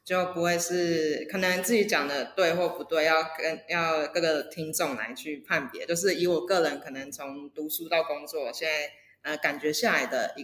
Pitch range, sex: 155-180 Hz, female